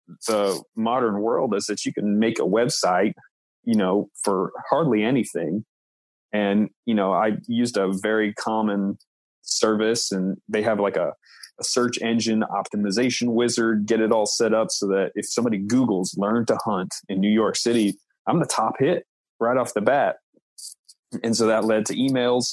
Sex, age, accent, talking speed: male, 30-49, American, 175 wpm